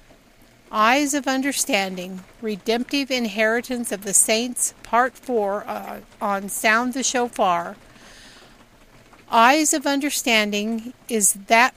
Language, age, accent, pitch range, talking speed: English, 50-69, American, 210-260 Hz, 95 wpm